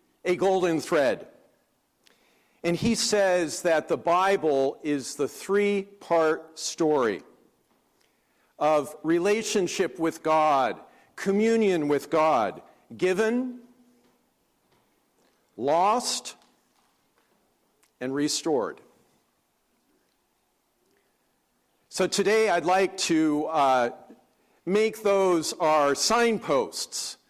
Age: 50-69